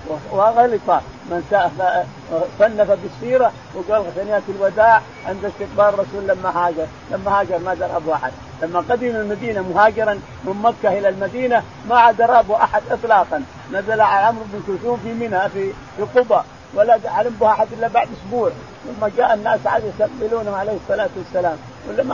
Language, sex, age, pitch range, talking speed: Arabic, male, 50-69, 185-230 Hz, 145 wpm